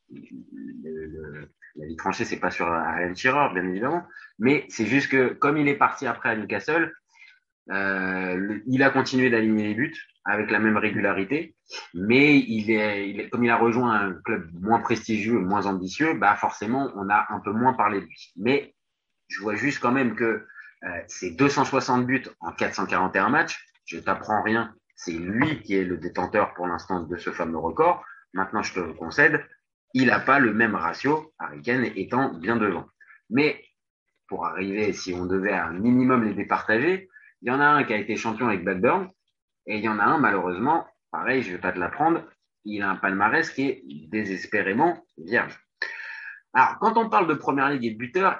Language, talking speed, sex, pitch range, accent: French, 200 wpm, male, 95-130 Hz, French